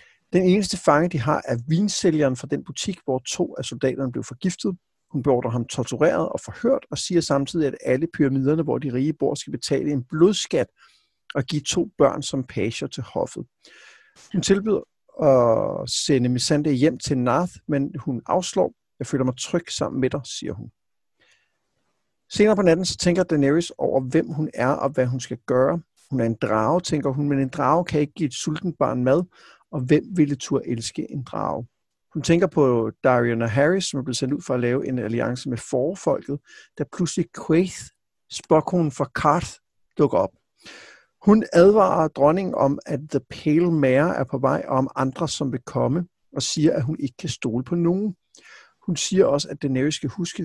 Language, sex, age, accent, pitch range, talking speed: Danish, male, 50-69, native, 130-170 Hz, 190 wpm